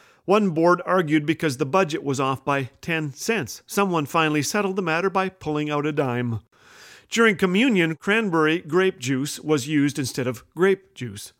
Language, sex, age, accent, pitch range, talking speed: English, male, 40-59, American, 145-185 Hz, 170 wpm